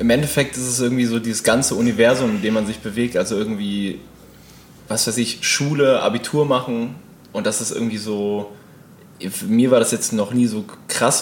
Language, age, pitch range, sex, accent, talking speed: German, 20-39, 100-120 Hz, male, German, 195 wpm